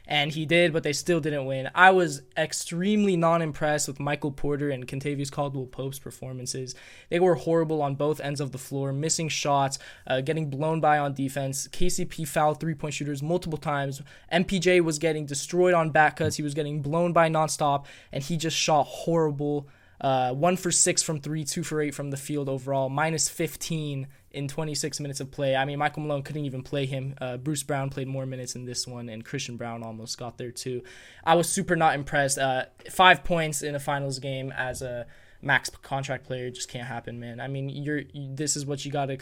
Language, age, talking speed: English, 20-39, 210 wpm